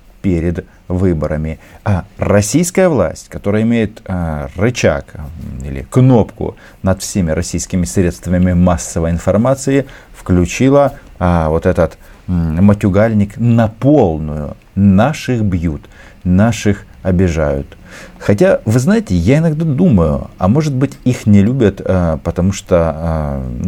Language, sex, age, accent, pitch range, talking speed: Russian, male, 50-69, native, 85-110 Hz, 115 wpm